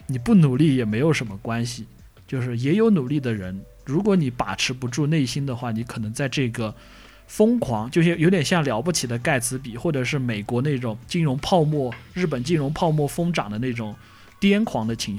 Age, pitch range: 20-39, 115-160 Hz